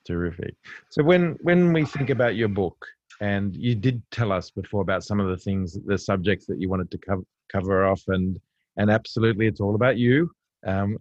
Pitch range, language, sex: 95-115 Hz, English, male